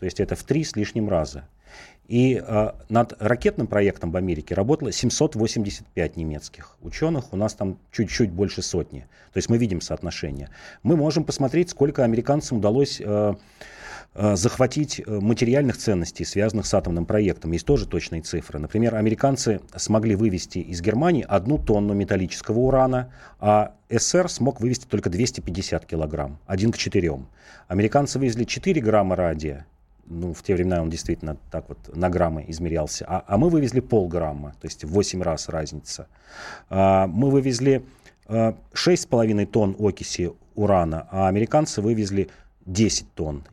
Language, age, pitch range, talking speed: Russian, 40-59, 90-120 Hz, 150 wpm